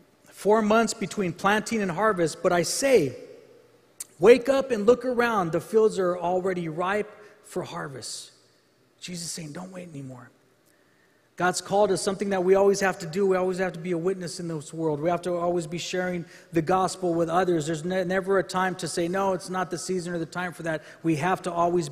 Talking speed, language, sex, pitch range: 210 wpm, English, male, 175-215 Hz